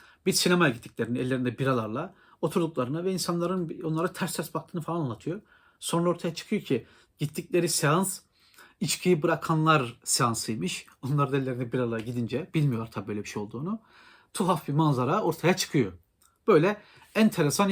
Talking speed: 140 wpm